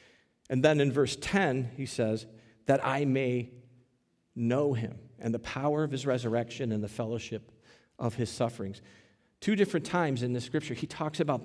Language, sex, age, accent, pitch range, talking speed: English, male, 50-69, American, 120-150 Hz, 175 wpm